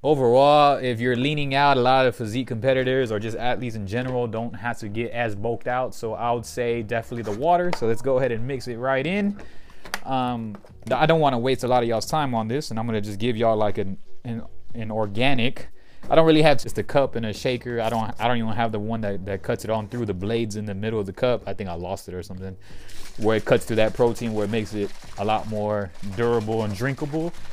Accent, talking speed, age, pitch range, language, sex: American, 260 wpm, 20-39, 105-130 Hz, English, male